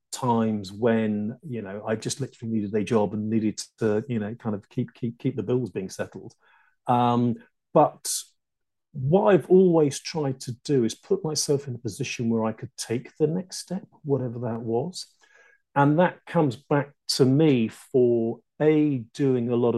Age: 40-59